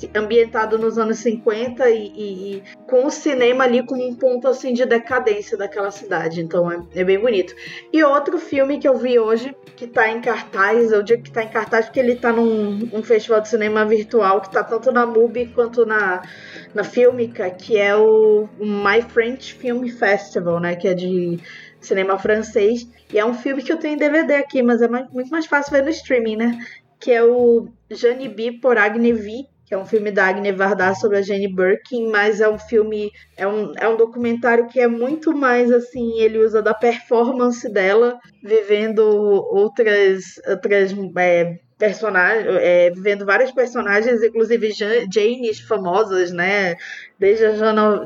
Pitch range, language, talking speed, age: 205-245 Hz, Portuguese, 180 wpm, 20-39